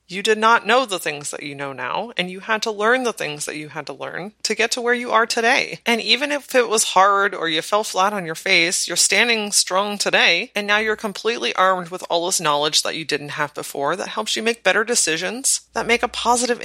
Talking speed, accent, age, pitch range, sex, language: 250 wpm, American, 30-49, 170-220 Hz, female, English